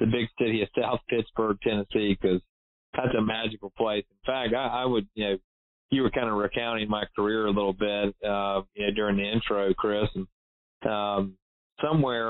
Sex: male